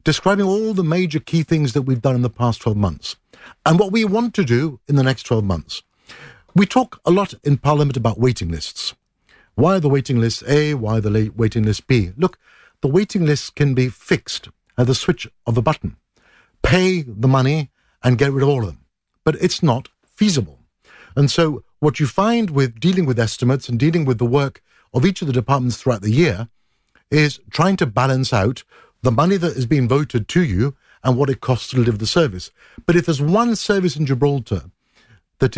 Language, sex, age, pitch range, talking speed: English, male, 60-79, 115-160 Hz, 210 wpm